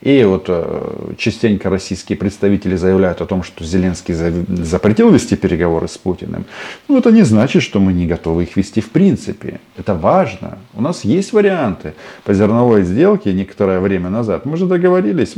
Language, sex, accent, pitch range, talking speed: Russian, male, native, 90-110 Hz, 165 wpm